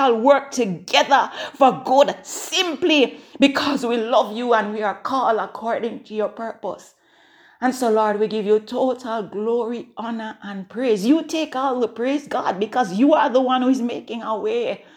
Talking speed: 175 wpm